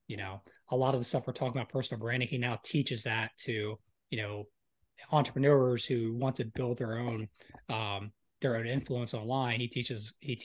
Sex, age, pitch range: male, 20-39, 110-135 Hz